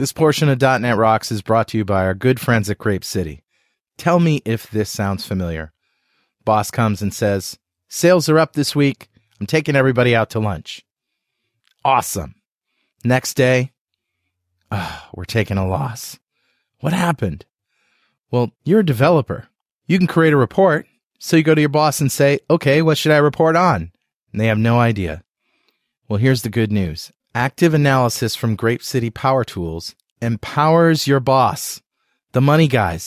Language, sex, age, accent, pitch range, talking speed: English, male, 30-49, American, 110-150 Hz, 170 wpm